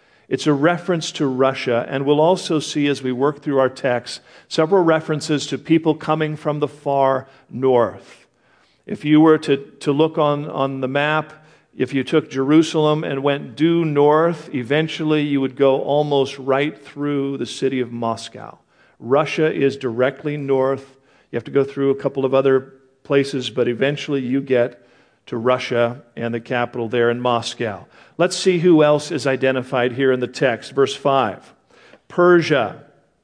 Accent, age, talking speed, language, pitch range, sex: American, 50-69, 165 wpm, English, 130-155 Hz, male